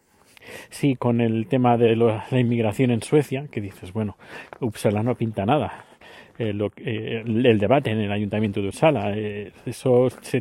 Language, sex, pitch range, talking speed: Spanish, male, 115-145 Hz, 160 wpm